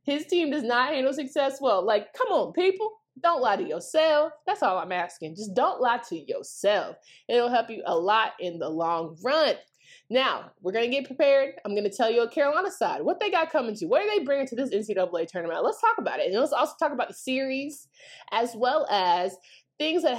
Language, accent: English, American